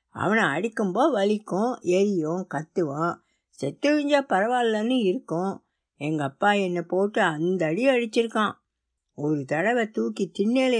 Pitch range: 160-225 Hz